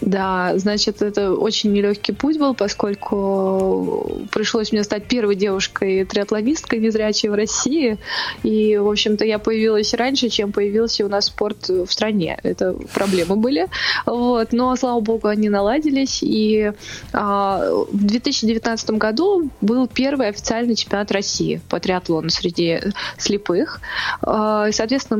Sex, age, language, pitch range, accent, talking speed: female, 20-39, Russian, 195-235 Hz, native, 125 wpm